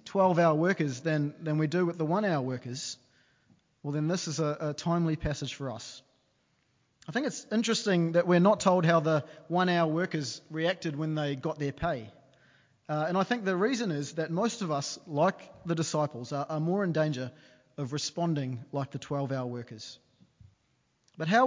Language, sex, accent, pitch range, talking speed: English, male, Australian, 140-175 Hz, 195 wpm